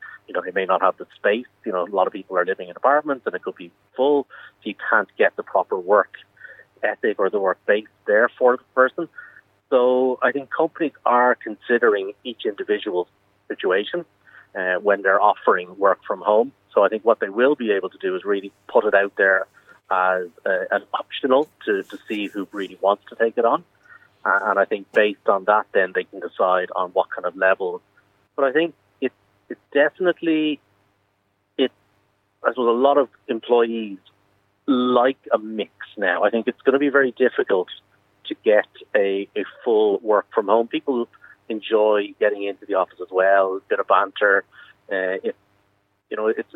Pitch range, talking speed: 100-150 Hz, 190 wpm